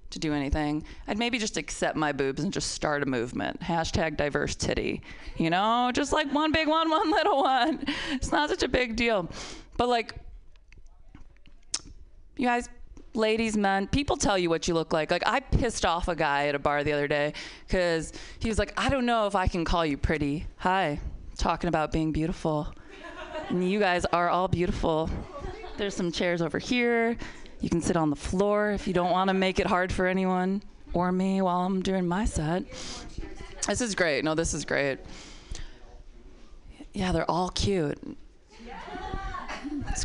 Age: 20-39